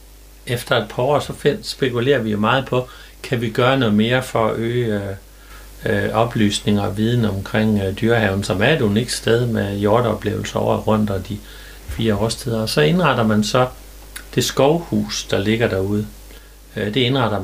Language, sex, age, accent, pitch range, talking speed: Danish, male, 60-79, native, 100-115 Hz, 180 wpm